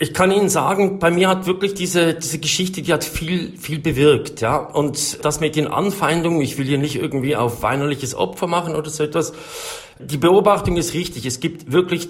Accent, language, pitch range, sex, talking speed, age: German, German, 125-160 Hz, male, 205 wpm, 50-69